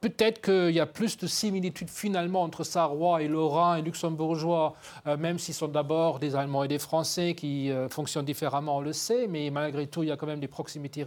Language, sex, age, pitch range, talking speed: French, male, 40-59, 160-215 Hz, 220 wpm